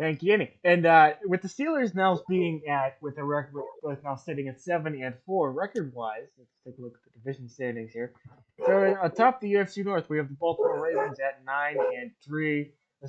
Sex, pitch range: male, 130-170 Hz